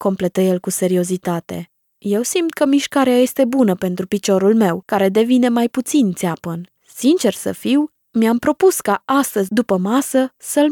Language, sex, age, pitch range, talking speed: Romanian, female, 20-39, 185-245 Hz, 155 wpm